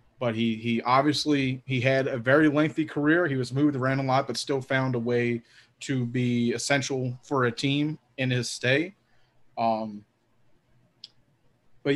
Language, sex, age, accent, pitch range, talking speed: English, male, 20-39, American, 120-145 Hz, 160 wpm